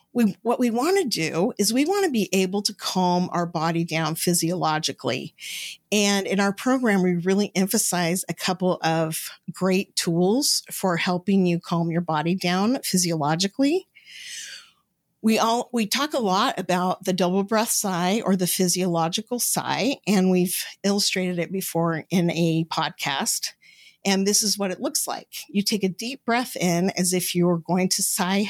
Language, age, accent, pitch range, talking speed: English, 50-69, American, 175-220 Hz, 170 wpm